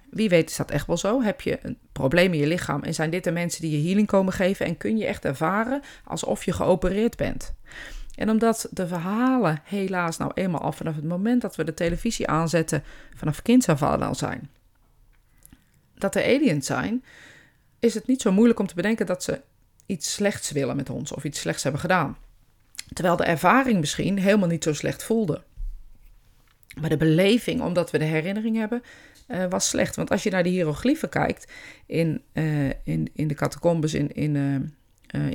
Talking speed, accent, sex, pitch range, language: 190 wpm, Dutch, female, 145-195 Hz, Dutch